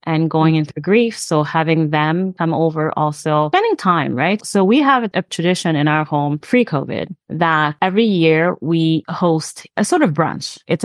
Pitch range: 160-185 Hz